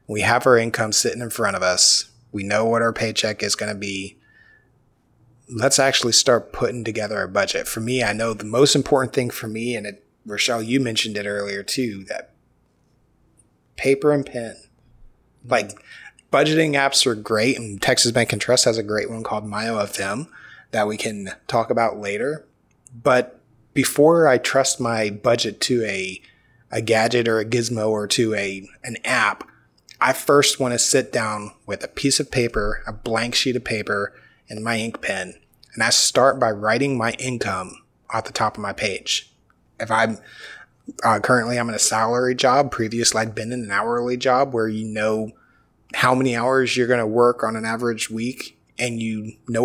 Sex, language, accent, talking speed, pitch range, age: male, English, American, 185 wpm, 110-125 Hz, 30-49